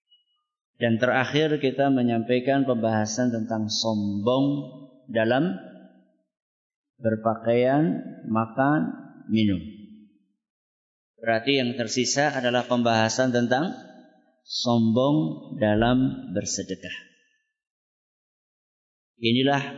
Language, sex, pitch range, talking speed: Malay, male, 105-145 Hz, 65 wpm